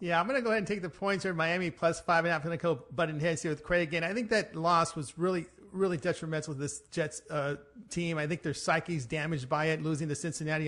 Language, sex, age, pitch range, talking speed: English, male, 40-59, 160-200 Hz, 290 wpm